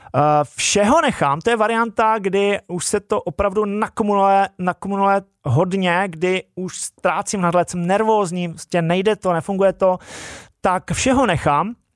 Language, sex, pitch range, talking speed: Czech, male, 160-210 Hz, 135 wpm